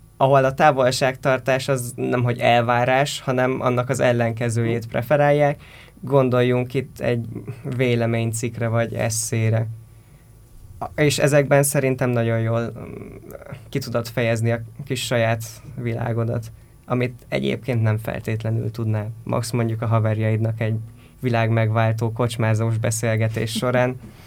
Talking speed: 110 wpm